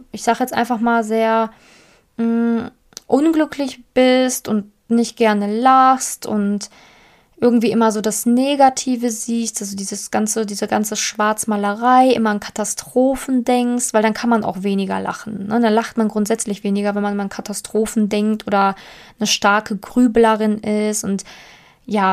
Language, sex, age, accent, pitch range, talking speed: German, female, 20-39, German, 215-250 Hz, 150 wpm